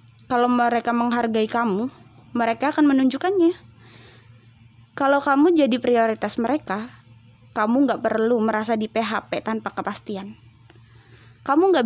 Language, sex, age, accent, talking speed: Indonesian, female, 20-39, native, 110 wpm